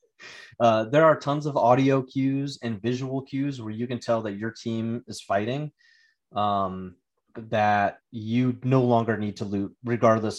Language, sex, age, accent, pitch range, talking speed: English, male, 30-49, American, 105-125 Hz, 160 wpm